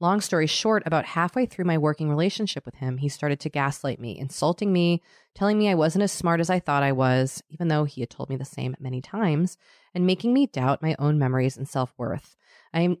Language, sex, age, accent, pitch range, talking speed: English, female, 30-49, American, 135-180 Hz, 230 wpm